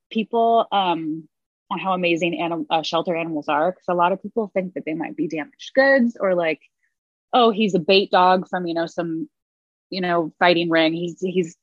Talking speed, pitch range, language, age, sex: 200 wpm, 160-200 Hz, English, 20-39, female